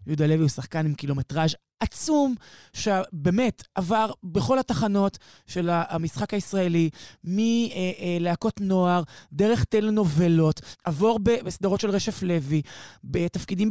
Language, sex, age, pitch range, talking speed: Hebrew, male, 20-39, 155-205 Hz, 110 wpm